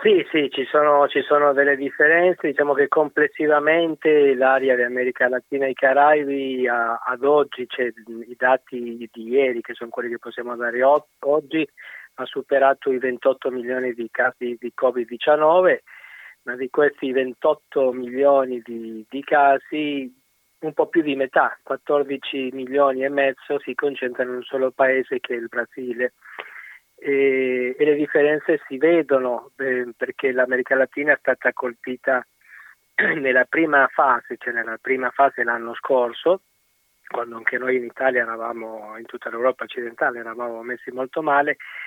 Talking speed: 150 wpm